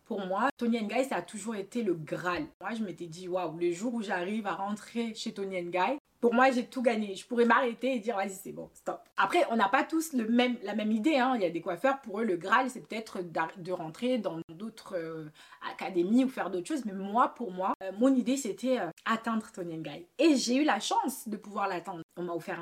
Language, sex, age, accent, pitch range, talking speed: French, female, 20-39, French, 190-255 Hz, 250 wpm